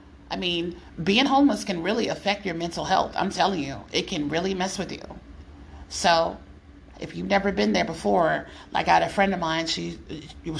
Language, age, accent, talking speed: English, 30-49, American, 190 wpm